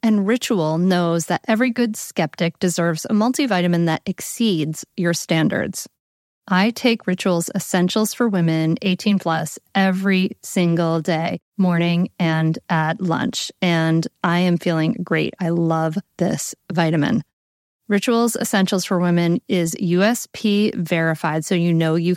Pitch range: 170-225 Hz